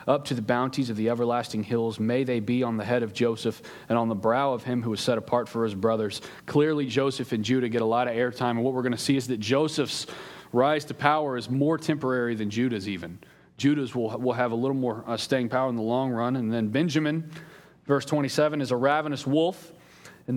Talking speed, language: 235 wpm, English